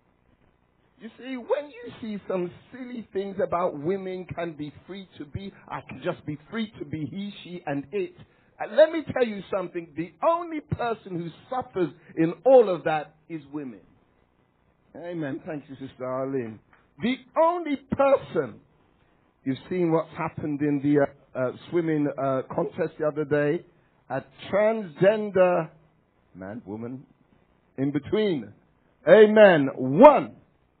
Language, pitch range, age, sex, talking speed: English, 160-245 Hz, 60-79, male, 140 wpm